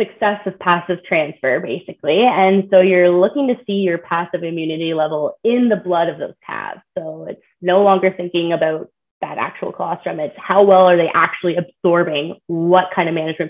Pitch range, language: 170-205 Hz, English